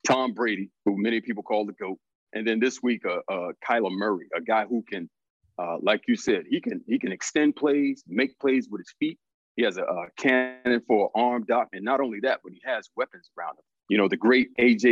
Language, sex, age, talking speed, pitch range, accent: English, male, 40-59, 235 wpm, 110-160 Hz, American